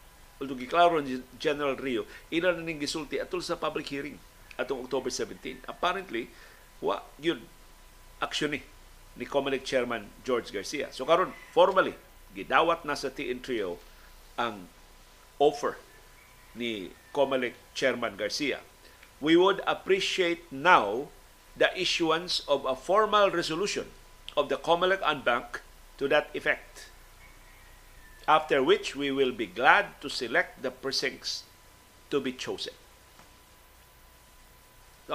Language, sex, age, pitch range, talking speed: Filipino, male, 50-69, 135-175 Hz, 115 wpm